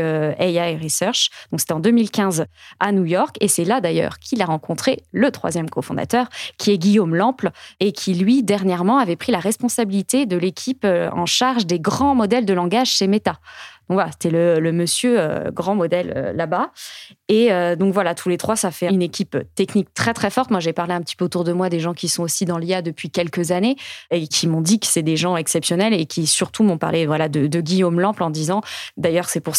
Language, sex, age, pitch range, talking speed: French, female, 20-39, 175-220 Hz, 225 wpm